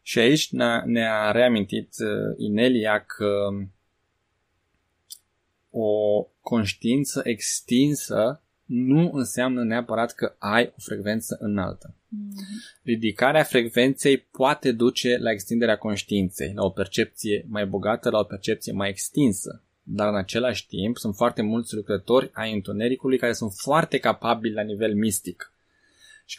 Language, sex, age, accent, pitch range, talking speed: Romanian, male, 20-39, native, 100-125 Hz, 120 wpm